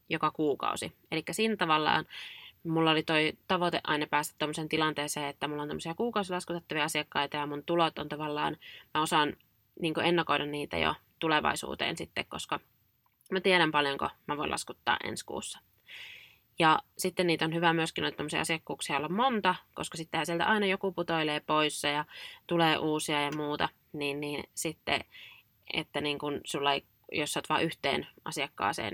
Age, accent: 20-39, native